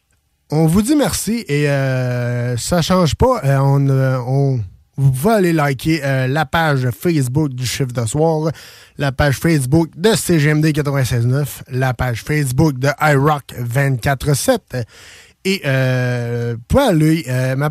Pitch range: 135-170 Hz